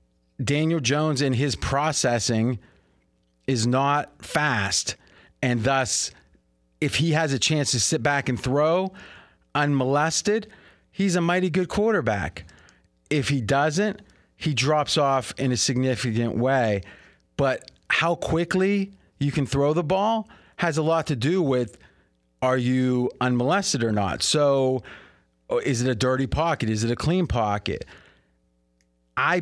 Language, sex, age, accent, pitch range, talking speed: English, male, 30-49, American, 125-160 Hz, 135 wpm